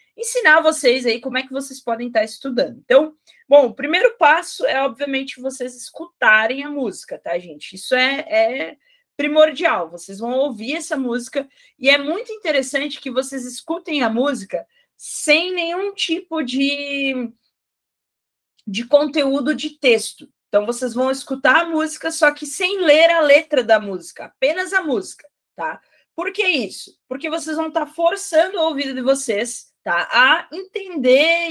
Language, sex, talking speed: Portuguese, female, 155 wpm